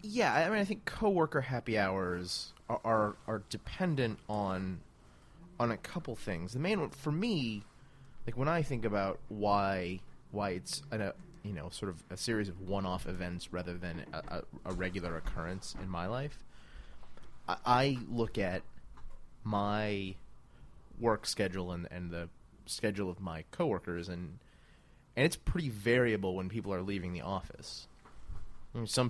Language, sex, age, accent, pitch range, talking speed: English, male, 30-49, American, 90-120 Hz, 155 wpm